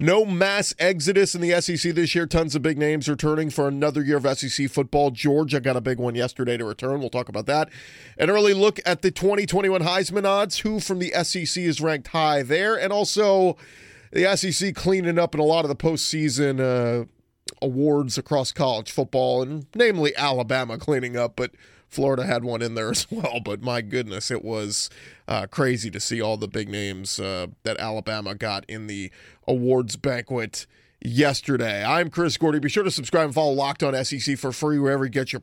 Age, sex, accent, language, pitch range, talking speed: 30-49, male, American, English, 125-160 Hz, 195 wpm